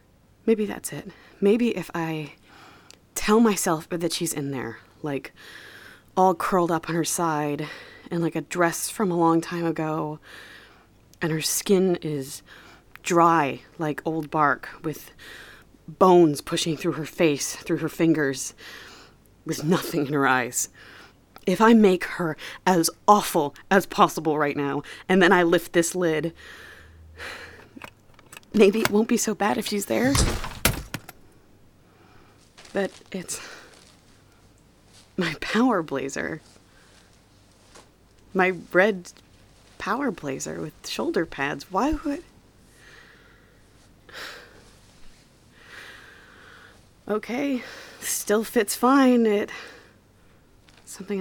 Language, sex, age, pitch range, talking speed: English, female, 30-49, 145-195 Hz, 110 wpm